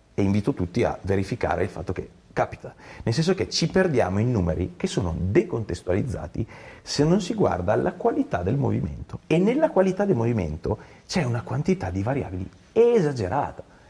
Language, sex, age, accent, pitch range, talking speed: Italian, male, 40-59, native, 90-125 Hz, 165 wpm